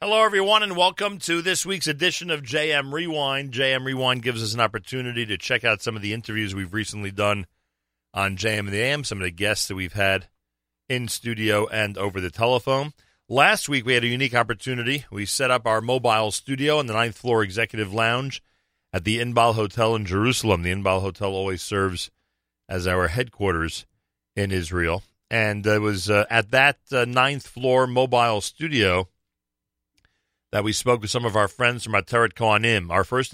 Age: 40-59